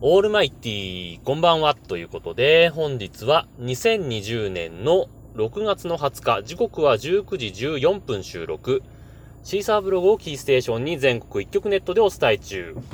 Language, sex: Japanese, male